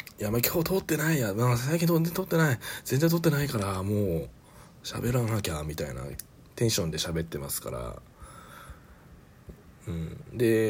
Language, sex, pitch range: Japanese, male, 85-125 Hz